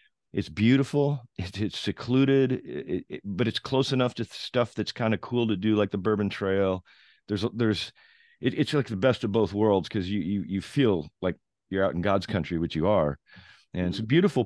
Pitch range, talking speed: 90-120 Hz, 215 wpm